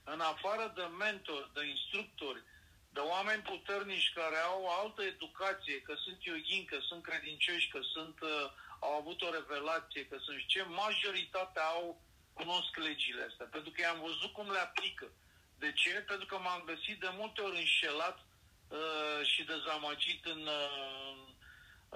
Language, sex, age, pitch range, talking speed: Romanian, male, 50-69, 150-190 Hz, 160 wpm